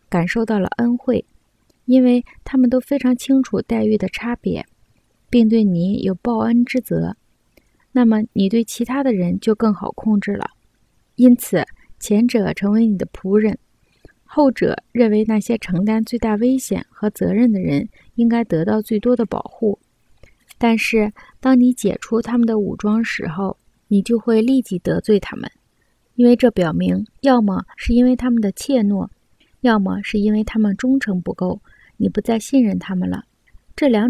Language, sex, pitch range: Chinese, female, 205-245 Hz